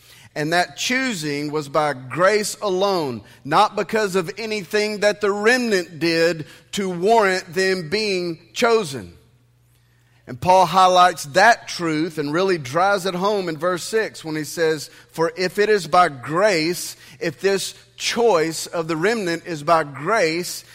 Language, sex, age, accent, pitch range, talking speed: English, male, 30-49, American, 150-190 Hz, 150 wpm